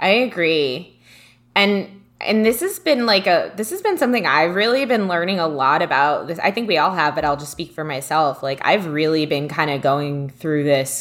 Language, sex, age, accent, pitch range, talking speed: English, female, 20-39, American, 150-185 Hz, 225 wpm